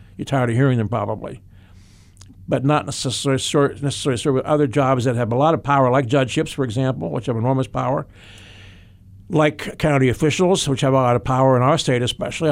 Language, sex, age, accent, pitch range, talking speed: English, male, 60-79, American, 110-140 Hz, 200 wpm